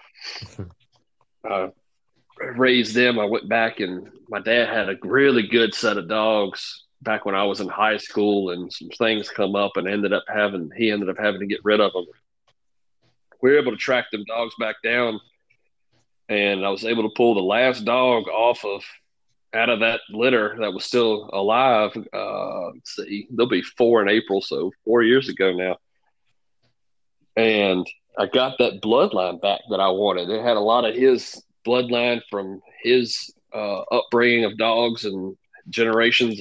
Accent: American